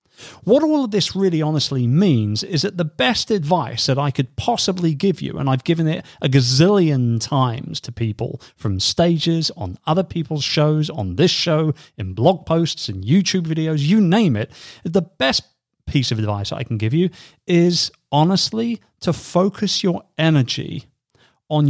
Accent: British